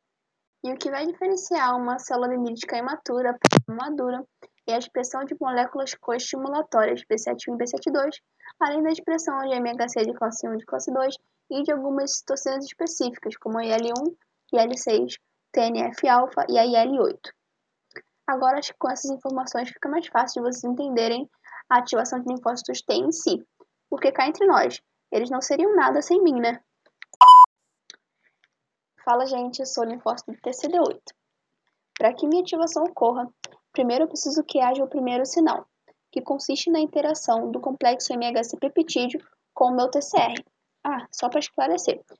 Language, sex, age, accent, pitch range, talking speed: Portuguese, female, 10-29, Brazilian, 245-310 Hz, 160 wpm